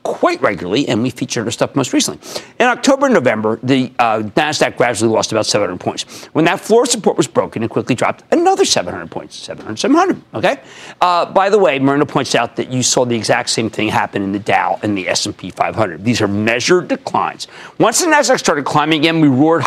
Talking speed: 215 wpm